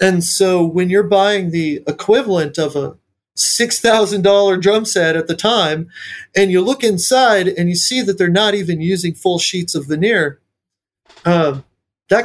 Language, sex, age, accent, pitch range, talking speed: English, male, 30-49, American, 150-190 Hz, 160 wpm